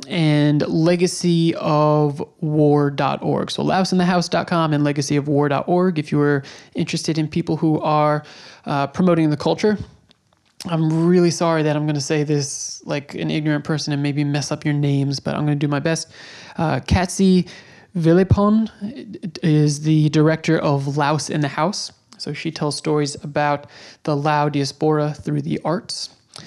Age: 20-39